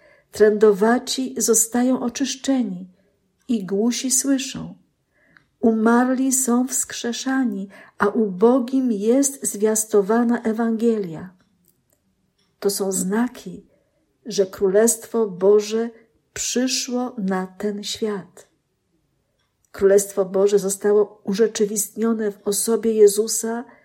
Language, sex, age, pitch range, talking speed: Polish, female, 50-69, 195-245 Hz, 80 wpm